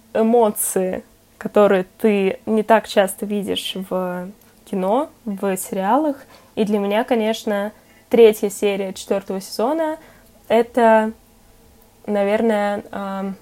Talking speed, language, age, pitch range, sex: 95 wpm, Russian, 20-39, 200-230 Hz, female